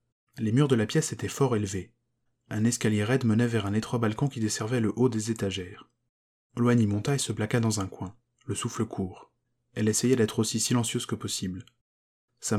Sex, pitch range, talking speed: male, 105-120 Hz, 195 wpm